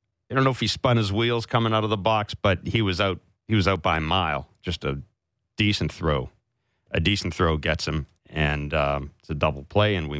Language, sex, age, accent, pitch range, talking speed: English, male, 40-59, American, 90-115 Hz, 235 wpm